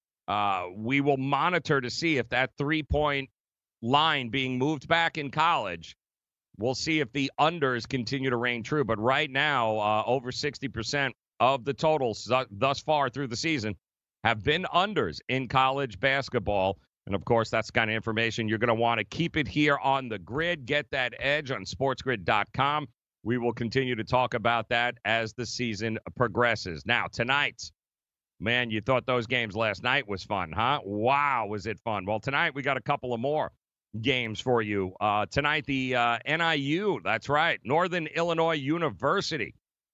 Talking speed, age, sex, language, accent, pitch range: 175 wpm, 40-59, male, English, American, 115-145 Hz